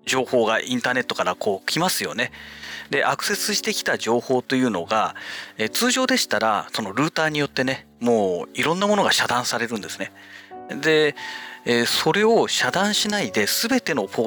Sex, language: male, Japanese